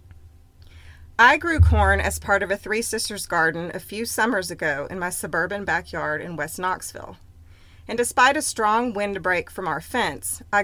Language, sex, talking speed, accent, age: English, female, 170 wpm, American, 30-49